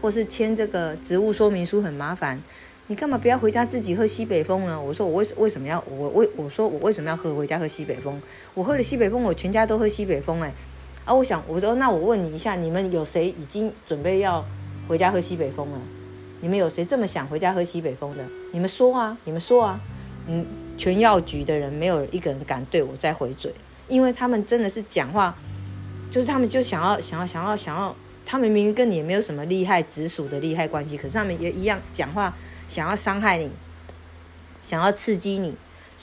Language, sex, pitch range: Chinese, female, 150-215 Hz